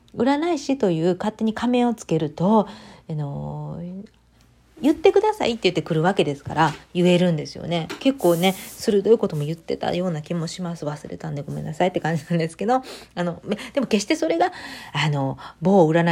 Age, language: 40-59, Japanese